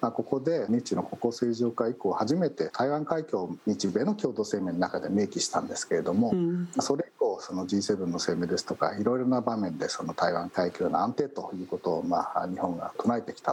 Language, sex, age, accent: Japanese, male, 50-69, native